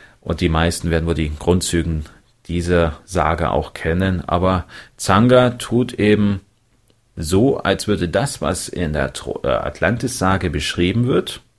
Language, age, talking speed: German, 30-49, 130 wpm